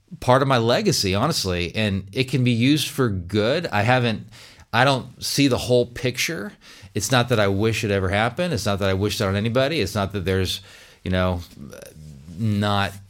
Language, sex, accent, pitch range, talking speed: English, male, American, 95-115 Hz, 195 wpm